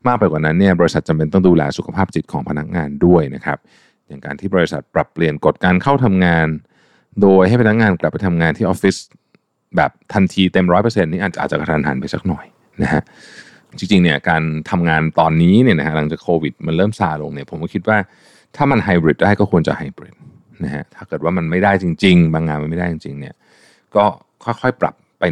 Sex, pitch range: male, 80-100 Hz